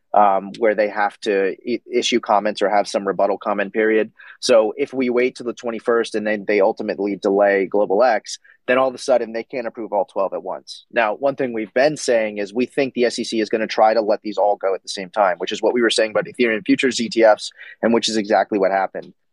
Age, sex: 30-49, male